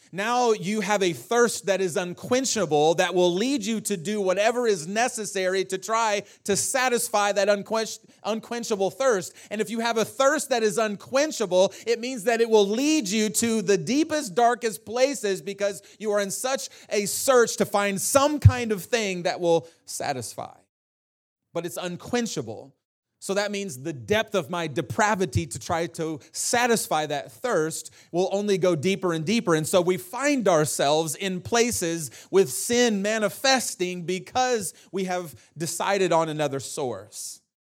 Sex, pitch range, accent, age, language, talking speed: male, 165-220 Hz, American, 30-49, English, 160 wpm